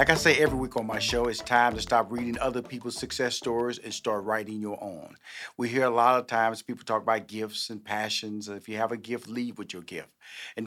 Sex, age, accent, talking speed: male, 40-59, American, 250 wpm